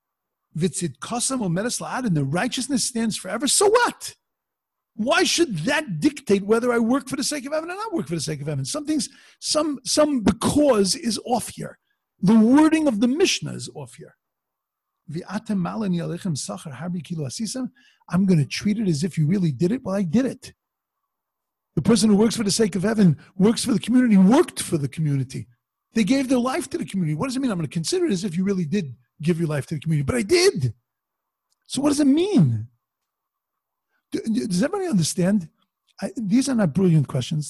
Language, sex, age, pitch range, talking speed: English, male, 50-69, 165-250 Hz, 190 wpm